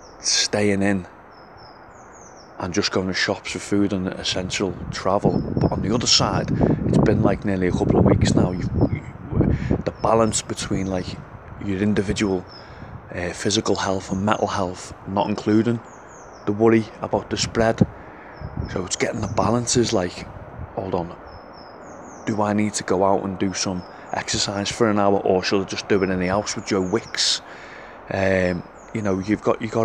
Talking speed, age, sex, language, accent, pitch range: 175 wpm, 30-49, male, English, British, 95-105 Hz